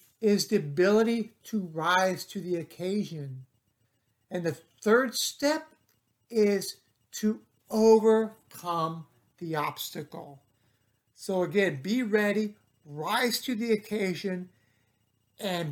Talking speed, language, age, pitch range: 100 wpm, English, 60-79, 150-215 Hz